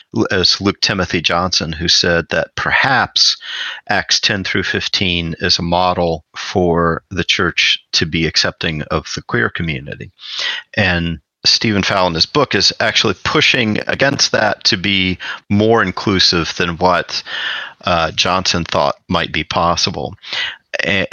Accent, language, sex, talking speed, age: American, English, male, 135 wpm, 40-59